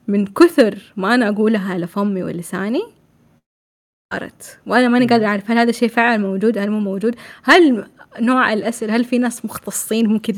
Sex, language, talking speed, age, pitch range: female, Arabic, 170 wpm, 20-39, 200-245 Hz